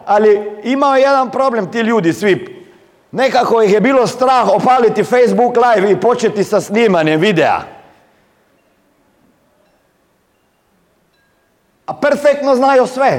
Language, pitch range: Croatian, 150-250 Hz